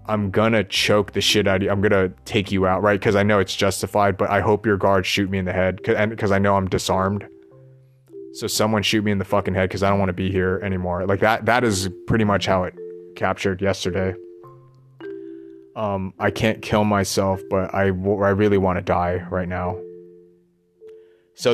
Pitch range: 95-110 Hz